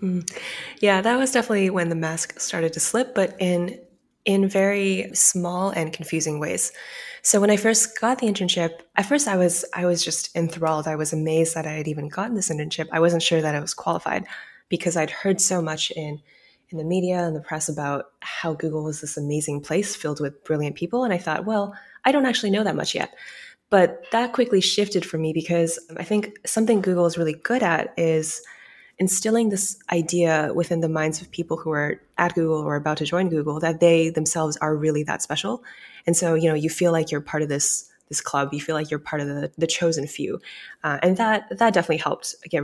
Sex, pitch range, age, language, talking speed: female, 155-195 Hz, 20-39, English, 220 wpm